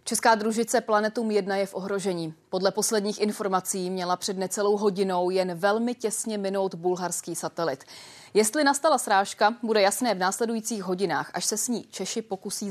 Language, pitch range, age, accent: Czech, 180-225 Hz, 30-49, native